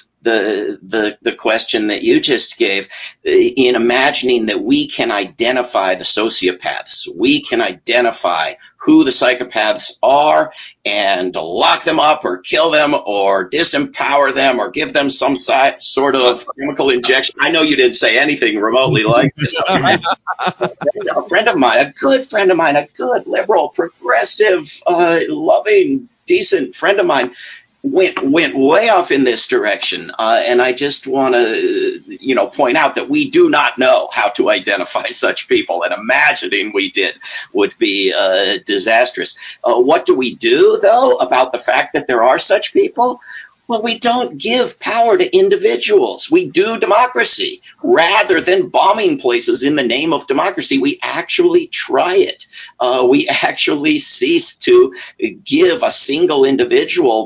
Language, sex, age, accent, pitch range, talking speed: English, male, 50-69, American, 285-370 Hz, 160 wpm